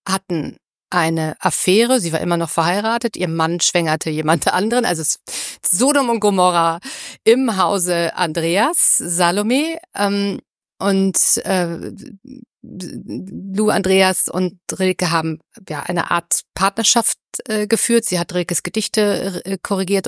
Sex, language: female, German